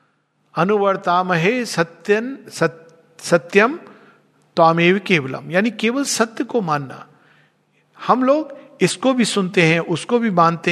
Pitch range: 160-225 Hz